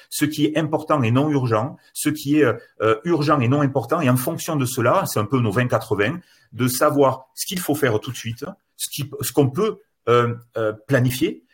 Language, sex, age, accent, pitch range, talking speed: French, male, 40-59, French, 110-150 Hz, 190 wpm